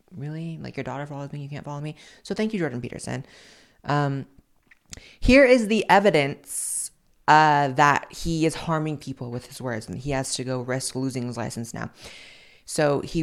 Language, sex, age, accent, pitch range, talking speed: English, female, 20-39, American, 135-170 Hz, 185 wpm